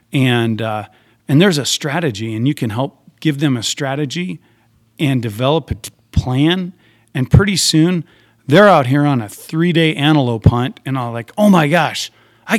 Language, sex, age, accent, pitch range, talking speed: English, male, 40-59, American, 120-155 Hz, 170 wpm